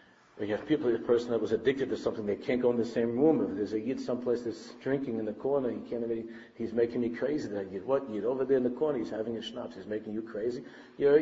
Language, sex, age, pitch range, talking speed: English, male, 50-69, 115-155 Hz, 280 wpm